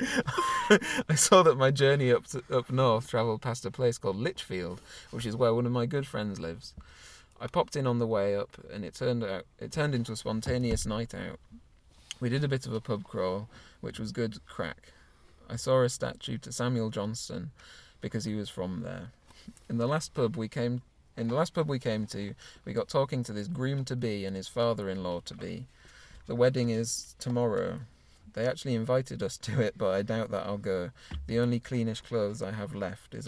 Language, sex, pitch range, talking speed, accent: English, male, 100-125 Hz, 210 wpm, British